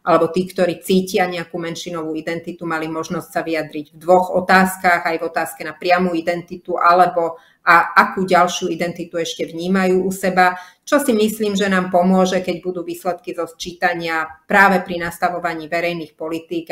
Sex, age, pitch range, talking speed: female, 30-49, 160-180 Hz, 160 wpm